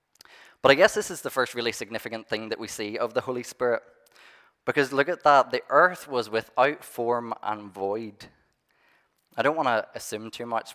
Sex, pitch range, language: male, 110-125 Hz, English